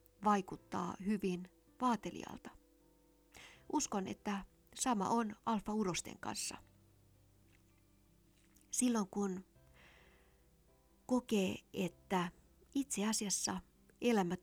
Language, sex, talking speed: Finnish, female, 65 wpm